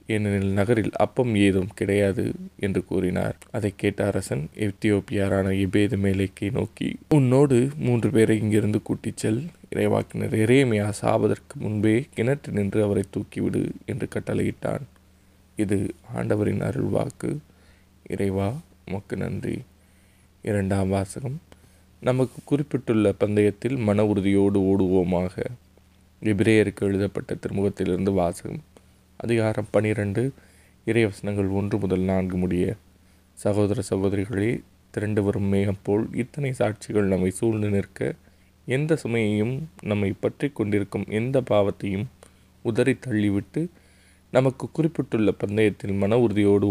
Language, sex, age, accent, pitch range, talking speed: Tamil, male, 20-39, native, 95-115 Hz, 95 wpm